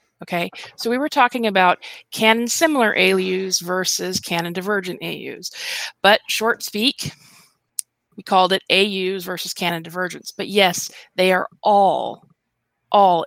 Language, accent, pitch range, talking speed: English, American, 180-225 Hz, 130 wpm